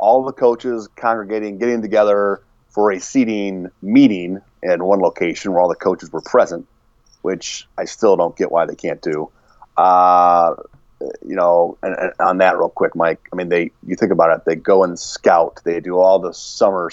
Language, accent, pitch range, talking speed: English, American, 90-115 Hz, 190 wpm